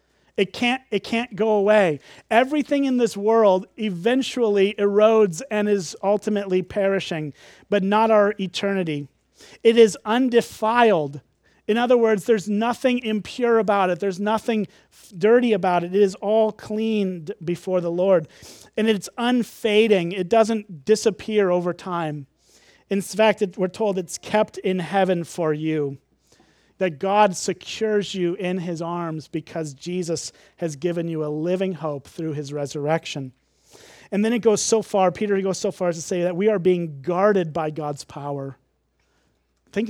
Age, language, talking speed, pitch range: 40-59, English, 155 wpm, 175-220 Hz